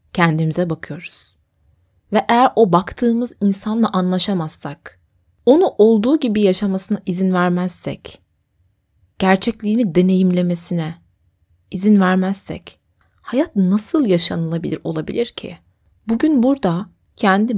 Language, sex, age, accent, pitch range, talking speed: Turkish, female, 30-49, native, 155-205 Hz, 90 wpm